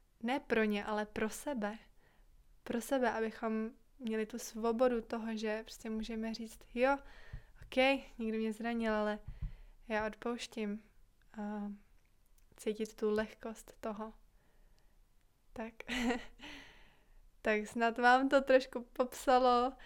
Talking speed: 115 wpm